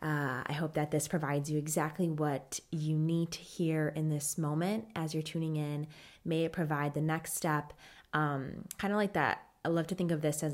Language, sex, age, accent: English, female, 20-39, American